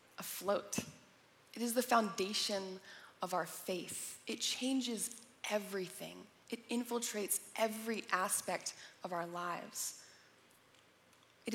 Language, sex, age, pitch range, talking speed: English, female, 20-39, 190-230 Hz, 100 wpm